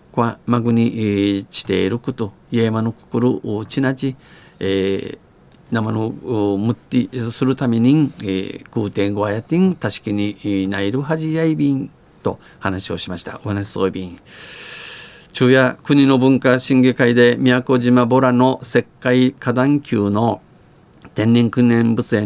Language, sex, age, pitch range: Japanese, male, 50-69, 105-130 Hz